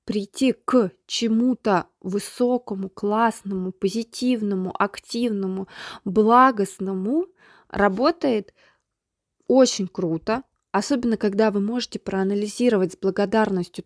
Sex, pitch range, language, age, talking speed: female, 195-235 Hz, Russian, 20-39, 80 wpm